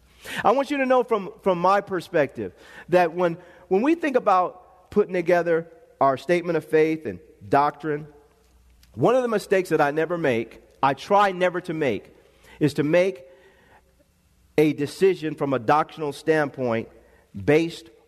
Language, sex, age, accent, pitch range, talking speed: English, male, 40-59, American, 150-205 Hz, 155 wpm